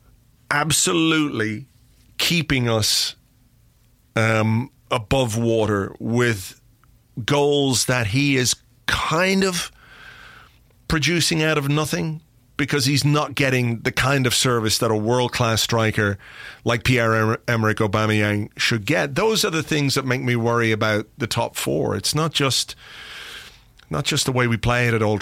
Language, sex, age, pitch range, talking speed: English, male, 40-59, 115-140 Hz, 140 wpm